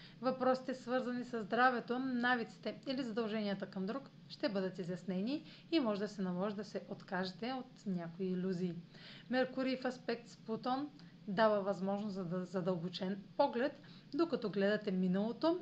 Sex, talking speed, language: female, 140 wpm, Bulgarian